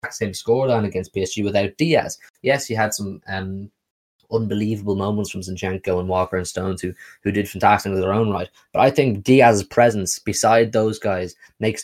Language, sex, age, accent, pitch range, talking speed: English, male, 20-39, Irish, 100-115 Hz, 180 wpm